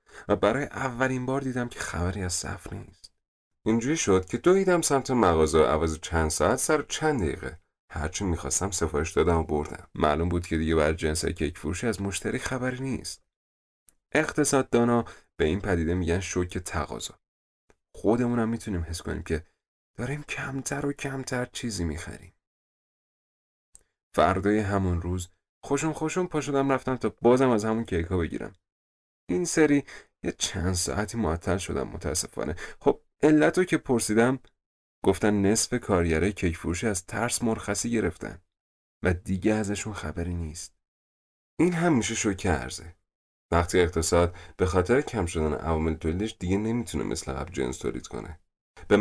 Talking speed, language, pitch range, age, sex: 145 wpm, Persian, 85-125 Hz, 30-49, male